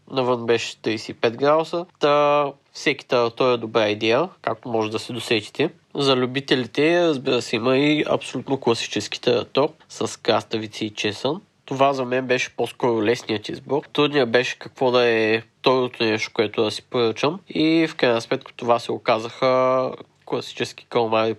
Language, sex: Bulgarian, male